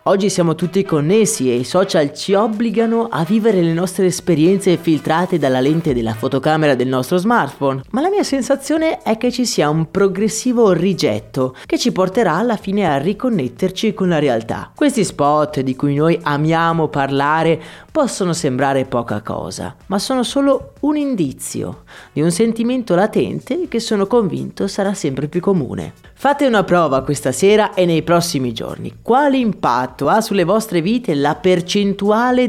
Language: Italian